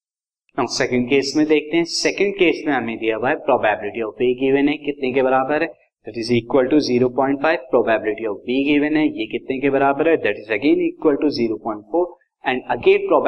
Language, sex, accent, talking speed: Hindi, male, native, 65 wpm